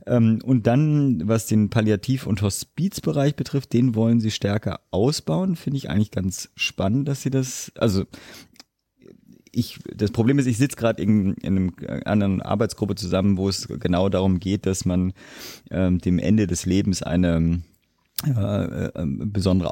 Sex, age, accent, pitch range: male, 30-49, German, 85-110 Hz